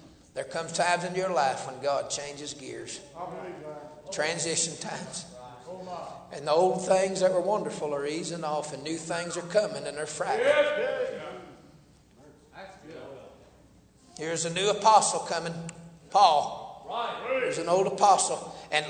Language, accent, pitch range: English, American, 165-220 Hz